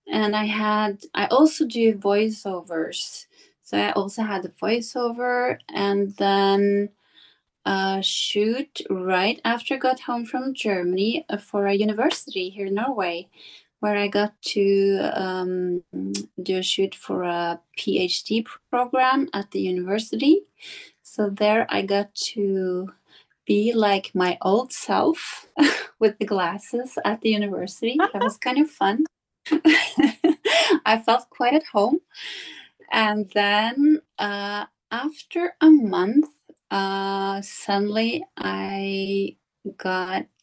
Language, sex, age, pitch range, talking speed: German, female, 20-39, 190-250 Hz, 120 wpm